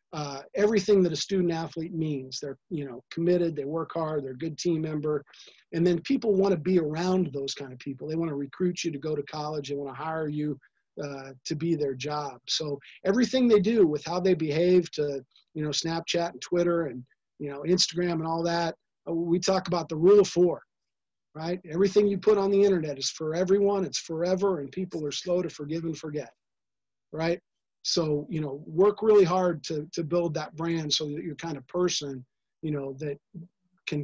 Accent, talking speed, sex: American, 205 wpm, male